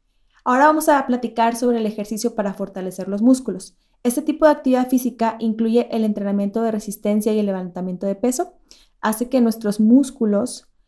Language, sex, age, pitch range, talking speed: Spanish, female, 20-39, 205-245 Hz, 165 wpm